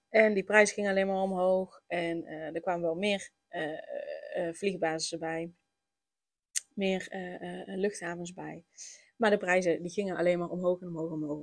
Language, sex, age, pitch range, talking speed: Dutch, female, 20-39, 175-210 Hz, 180 wpm